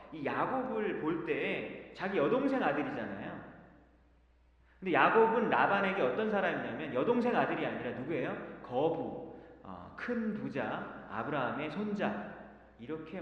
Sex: male